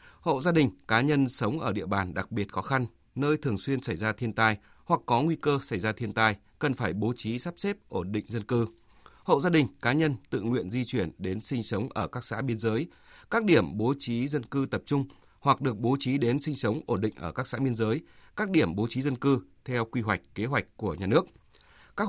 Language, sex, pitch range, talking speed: Vietnamese, male, 110-145 Hz, 250 wpm